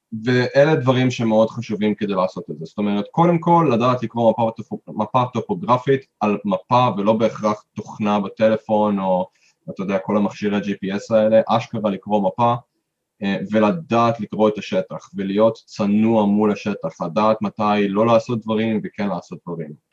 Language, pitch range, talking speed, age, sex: Hebrew, 105-120 Hz, 150 wpm, 20-39, male